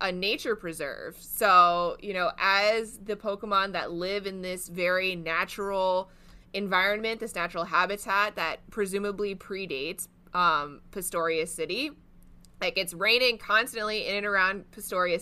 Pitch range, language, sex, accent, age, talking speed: 175-215 Hz, English, female, American, 20-39, 130 wpm